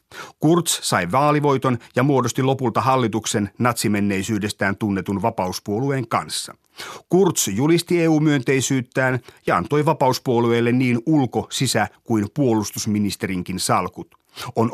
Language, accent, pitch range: Finnish, native, 105-140 Hz